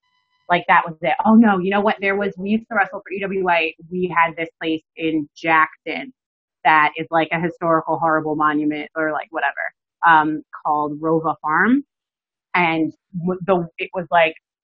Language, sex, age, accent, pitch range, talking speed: English, female, 30-49, American, 160-185 Hz, 170 wpm